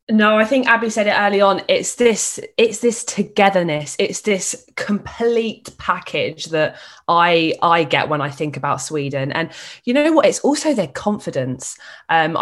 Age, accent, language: 20-39, British, English